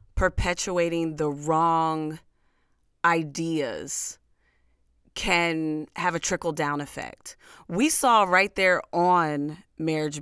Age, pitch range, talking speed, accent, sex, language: 30-49, 150-195 Hz, 95 wpm, American, female, English